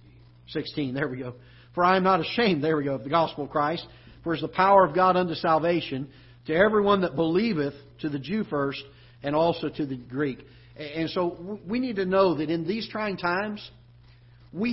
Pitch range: 135-185 Hz